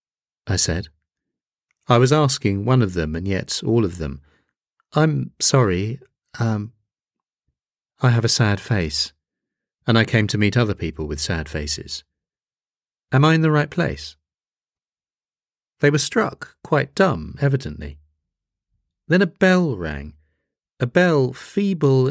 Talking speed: 135 wpm